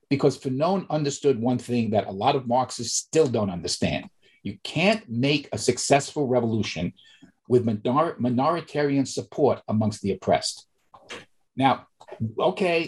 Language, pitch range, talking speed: English, 115-150 Hz, 125 wpm